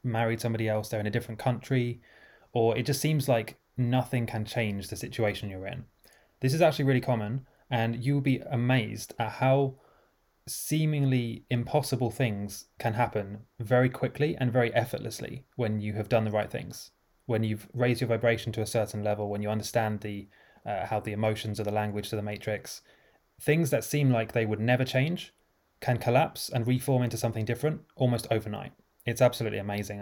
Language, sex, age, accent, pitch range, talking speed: English, male, 20-39, British, 110-125 Hz, 180 wpm